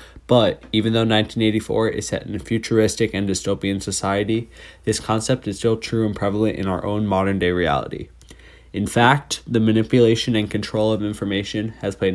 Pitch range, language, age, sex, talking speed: 95-115 Hz, English, 20-39, male, 170 wpm